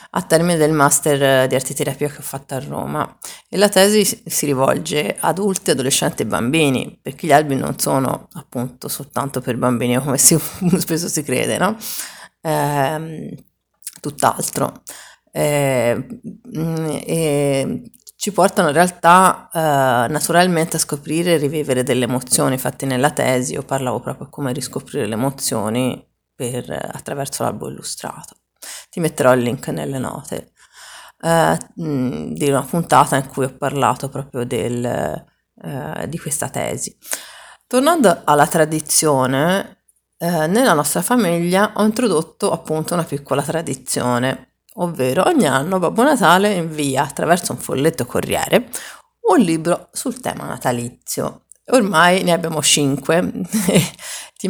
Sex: female